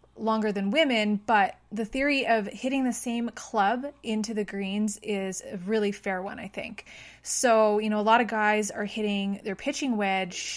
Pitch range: 195-225 Hz